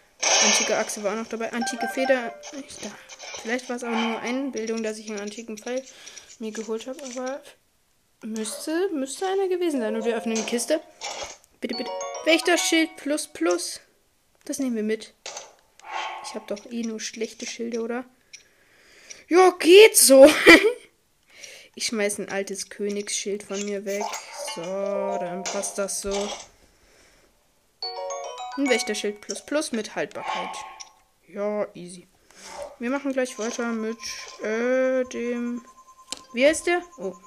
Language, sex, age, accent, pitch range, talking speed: German, female, 20-39, German, 215-290 Hz, 140 wpm